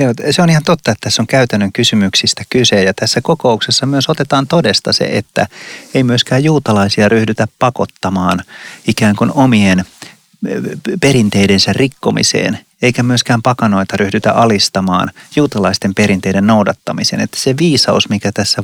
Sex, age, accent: male, 30-49, native